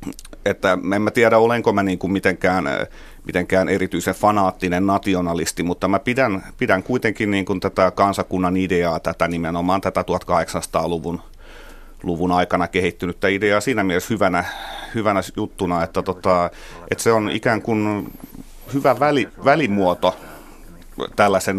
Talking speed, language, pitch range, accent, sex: 130 wpm, Finnish, 90-100 Hz, native, male